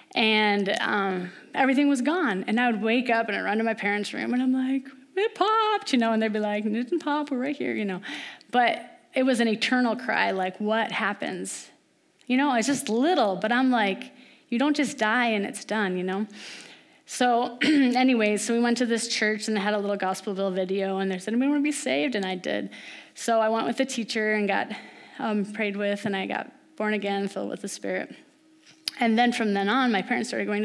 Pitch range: 210-270 Hz